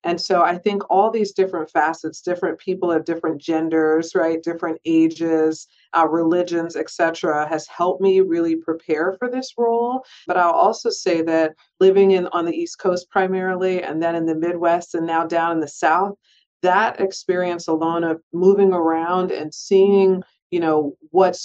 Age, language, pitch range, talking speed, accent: 40-59, English, 165-195 Hz, 175 wpm, American